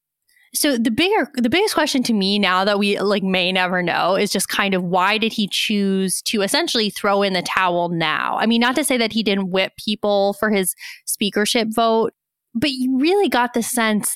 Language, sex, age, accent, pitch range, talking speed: English, female, 20-39, American, 200-250 Hz, 210 wpm